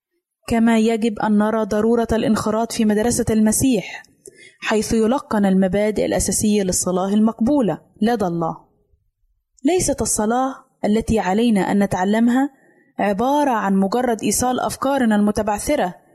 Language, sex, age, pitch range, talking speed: Arabic, female, 20-39, 210-270 Hz, 110 wpm